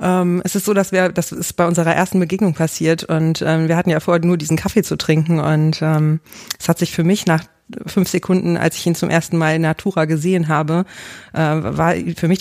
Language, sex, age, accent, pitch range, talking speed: German, female, 30-49, German, 160-180 Hz, 230 wpm